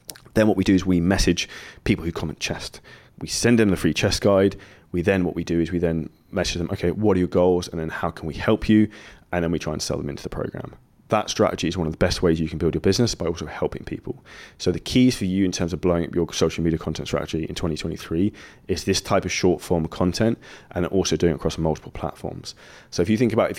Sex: male